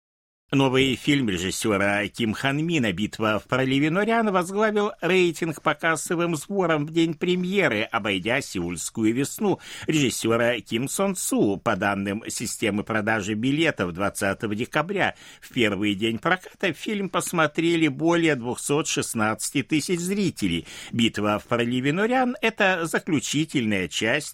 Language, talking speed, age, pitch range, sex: Russian, 120 wpm, 60-79, 100-165 Hz, male